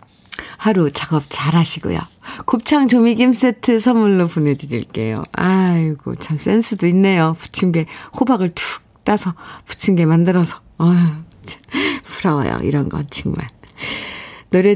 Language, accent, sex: Korean, native, female